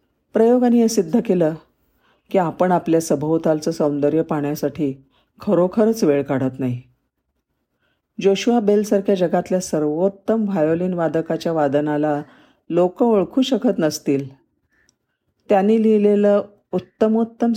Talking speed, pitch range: 95 wpm, 150-200 Hz